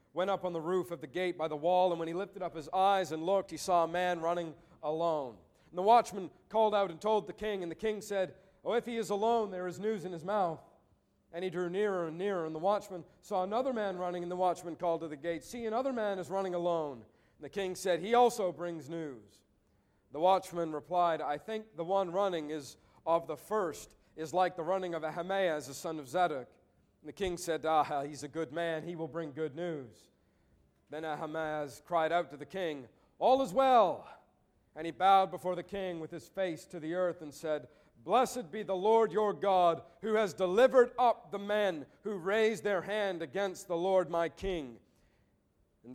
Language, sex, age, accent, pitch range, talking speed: English, male, 40-59, American, 155-195 Hz, 215 wpm